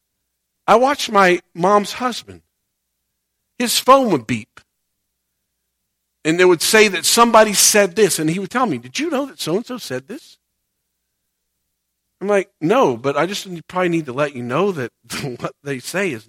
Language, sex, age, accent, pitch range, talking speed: English, male, 50-69, American, 175-290 Hz, 170 wpm